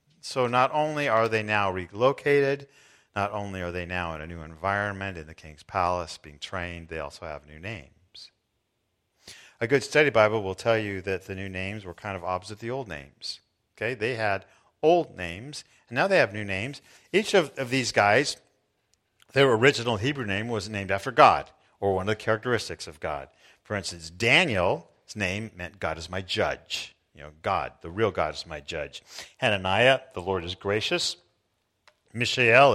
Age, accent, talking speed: 50-69, American, 185 wpm